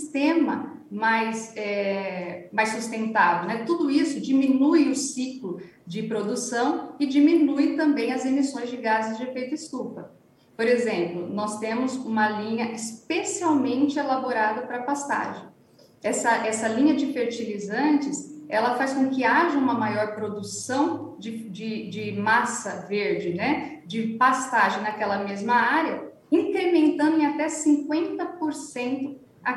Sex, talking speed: female, 125 wpm